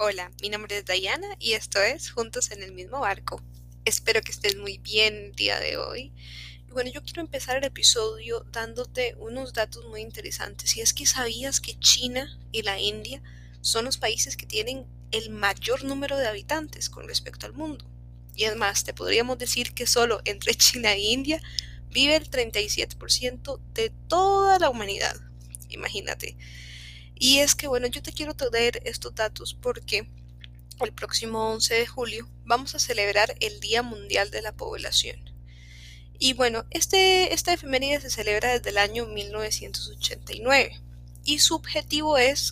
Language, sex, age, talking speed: Spanish, female, 20-39, 160 wpm